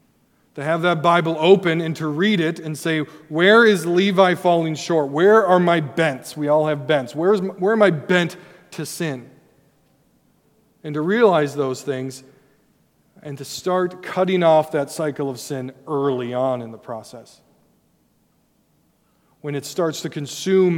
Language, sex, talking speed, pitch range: English, male, 160 wpm, 140-170 Hz